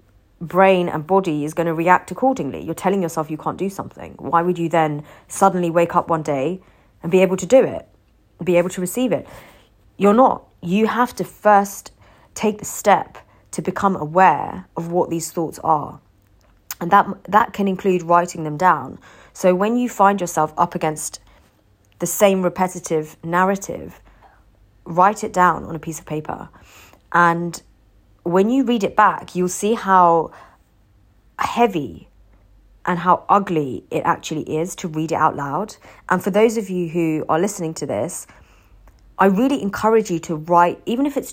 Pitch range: 155-195 Hz